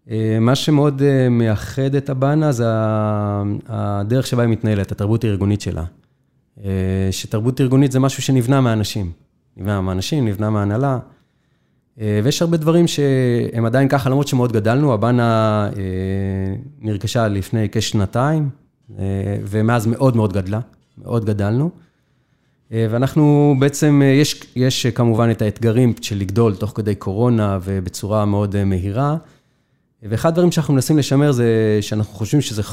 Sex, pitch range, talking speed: male, 110-140 Hz, 120 wpm